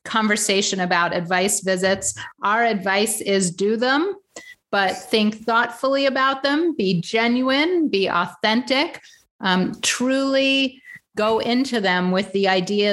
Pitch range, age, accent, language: 180-240 Hz, 30-49, American, English